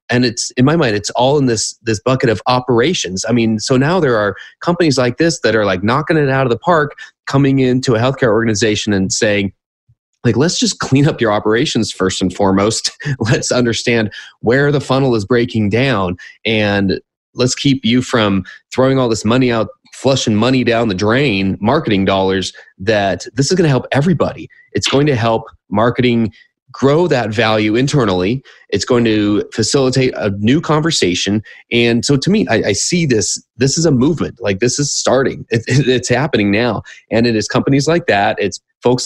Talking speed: 190 wpm